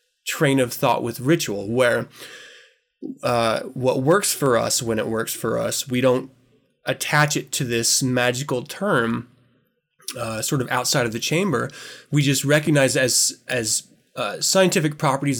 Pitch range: 125-155 Hz